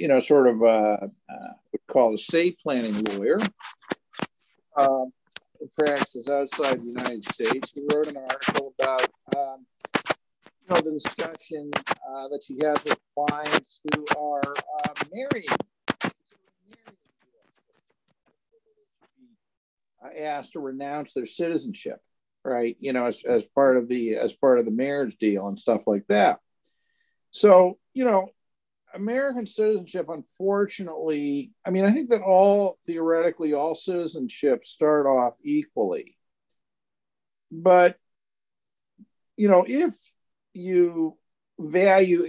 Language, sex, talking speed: English, male, 120 wpm